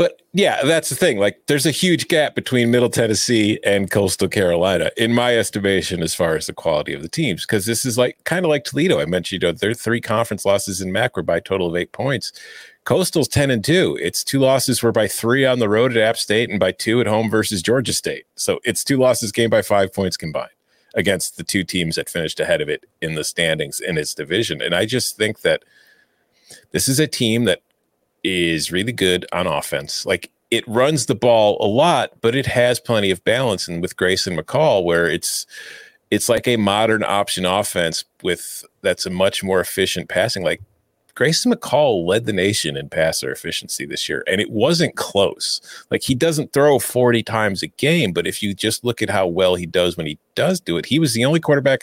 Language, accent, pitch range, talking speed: English, American, 100-145 Hz, 220 wpm